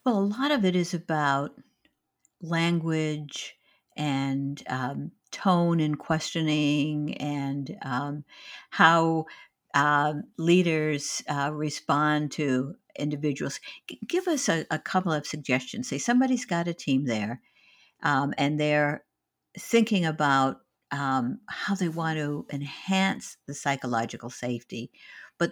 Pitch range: 145-190 Hz